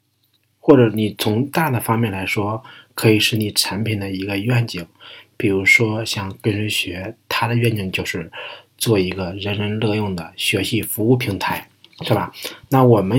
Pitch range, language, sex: 100-120 Hz, Chinese, male